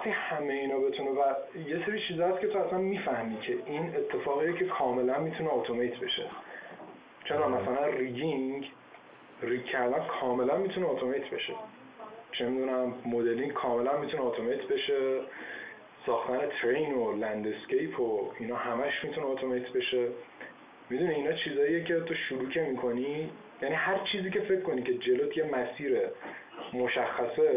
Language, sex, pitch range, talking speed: Persian, male, 125-210 Hz, 140 wpm